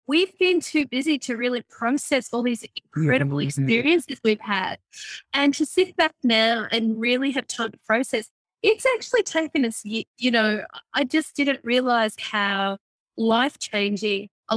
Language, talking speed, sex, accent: English, 150 wpm, female, Australian